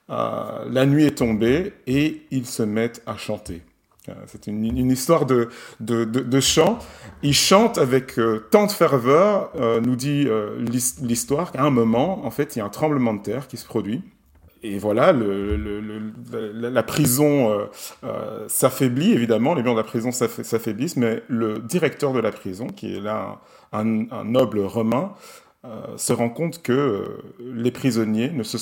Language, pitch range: French, 110-135 Hz